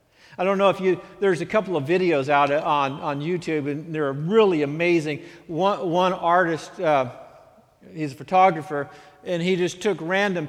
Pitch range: 145-185 Hz